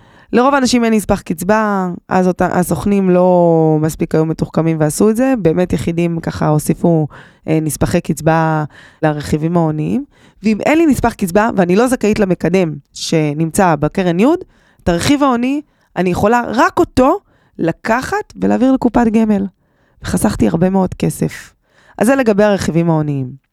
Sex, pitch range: female, 165-230 Hz